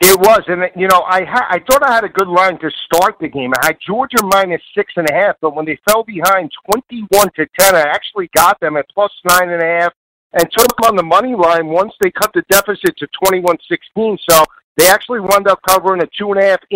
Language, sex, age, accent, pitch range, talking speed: English, male, 50-69, American, 160-195 Hz, 215 wpm